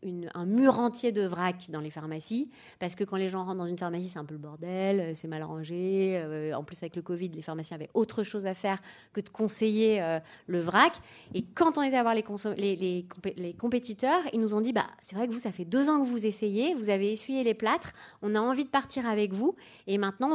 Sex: female